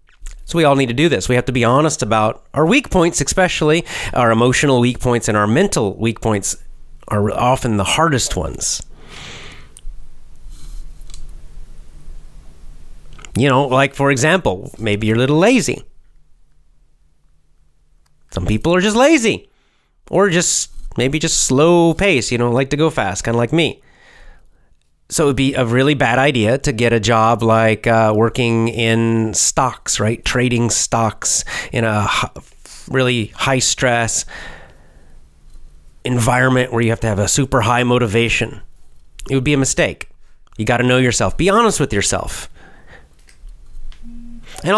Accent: American